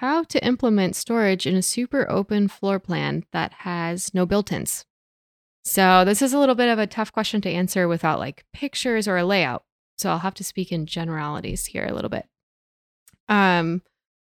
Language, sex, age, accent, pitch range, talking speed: English, female, 20-39, American, 165-200 Hz, 185 wpm